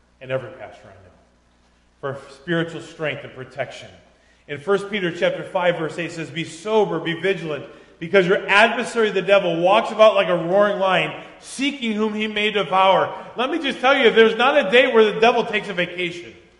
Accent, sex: American, male